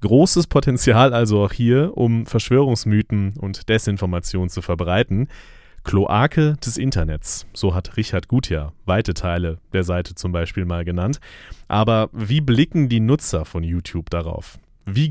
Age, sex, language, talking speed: 30-49, male, German, 140 wpm